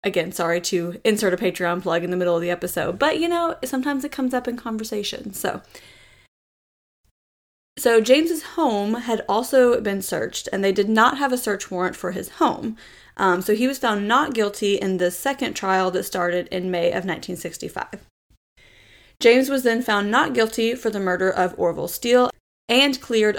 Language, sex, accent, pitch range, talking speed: English, female, American, 185-245 Hz, 185 wpm